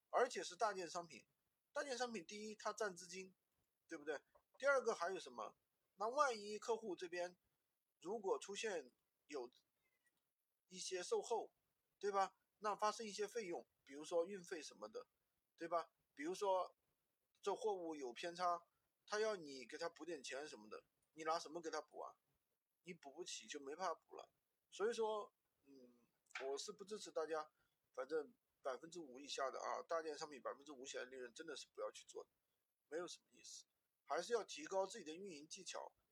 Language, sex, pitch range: Chinese, male, 155-215 Hz